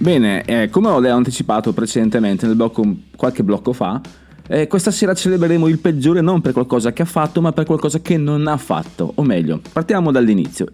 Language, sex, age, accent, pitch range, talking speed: Italian, male, 30-49, native, 110-155 Hz, 195 wpm